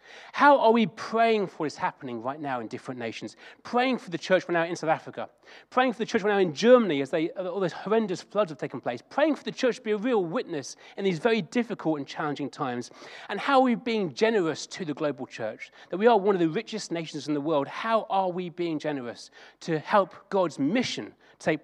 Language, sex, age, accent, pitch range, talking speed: English, male, 40-59, British, 145-210 Hz, 235 wpm